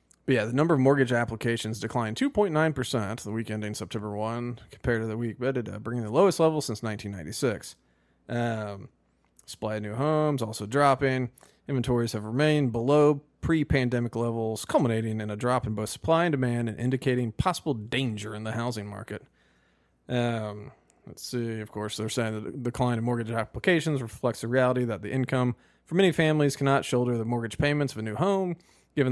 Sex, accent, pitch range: male, American, 110-135 Hz